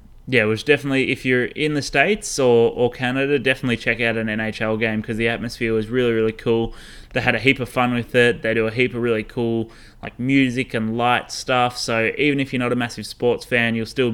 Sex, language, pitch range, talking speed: male, English, 115-130 Hz, 240 wpm